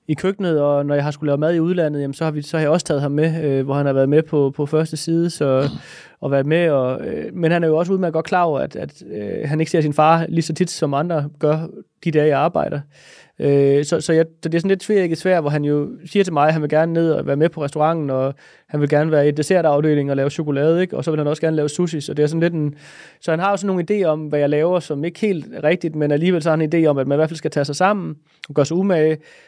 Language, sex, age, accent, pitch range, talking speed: English, male, 20-39, Danish, 145-170 Hz, 310 wpm